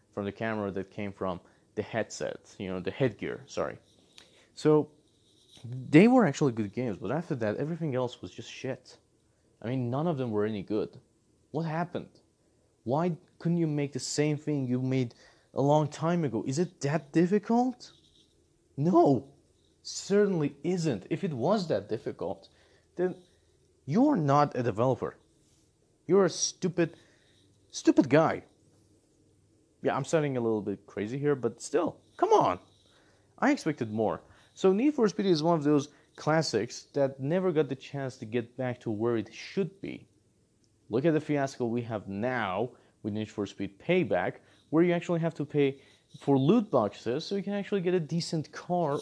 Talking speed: 170 wpm